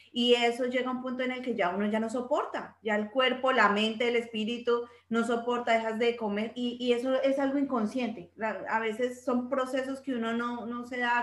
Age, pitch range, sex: 30-49, 200-240 Hz, female